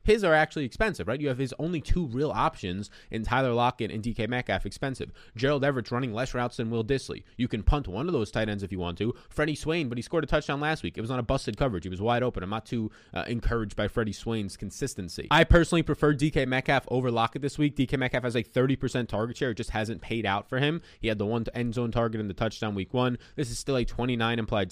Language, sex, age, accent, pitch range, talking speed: English, male, 20-39, American, 110-135 Hz, 260 wpm